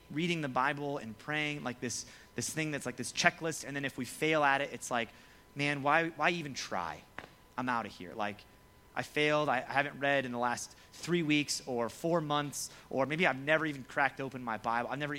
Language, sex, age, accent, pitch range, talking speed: English, male, 30-49, American, 115-150 Hz, 225 wpm